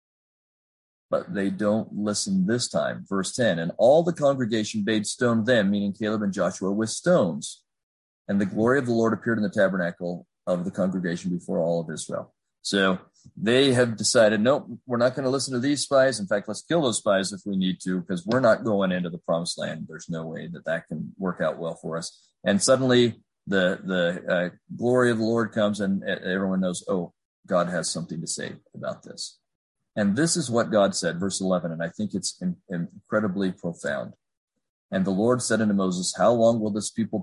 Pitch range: 90-115 Hz